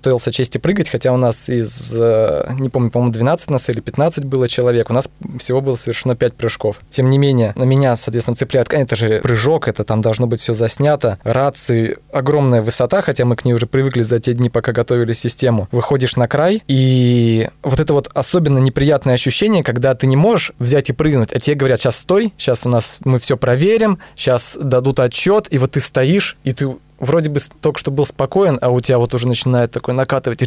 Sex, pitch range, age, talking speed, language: male, 125-145 Hz, 20-39, 210 wpm, Russian